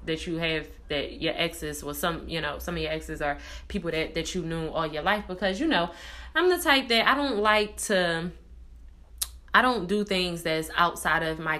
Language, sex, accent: English, female, American